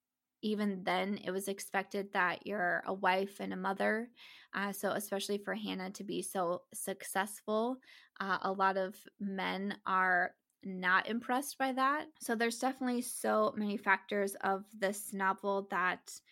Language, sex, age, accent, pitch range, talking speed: English, female, 20-39, American, 190-225 Hz, 150 wpm